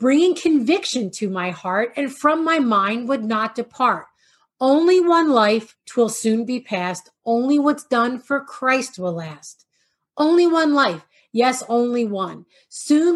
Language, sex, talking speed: English, female, 150 wpm